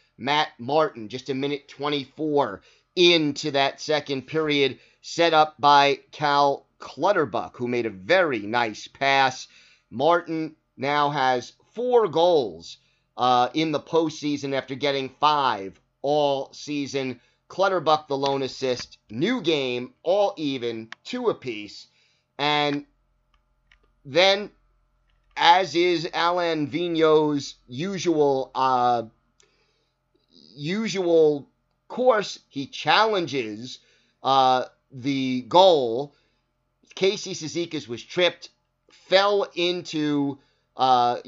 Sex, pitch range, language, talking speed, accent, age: male, 130-165 Hz, English, 95 wpm, American, 30-49